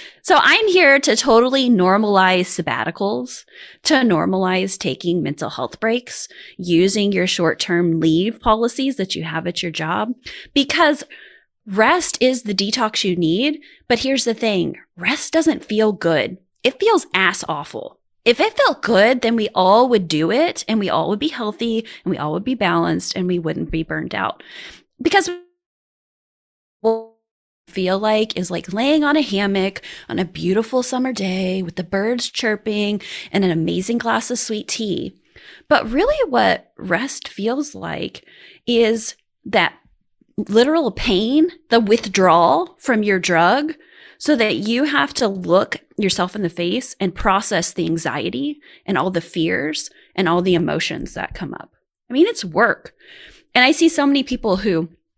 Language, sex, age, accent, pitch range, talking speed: English, female, 20-39, American, 185-270 Hz, 160 wpm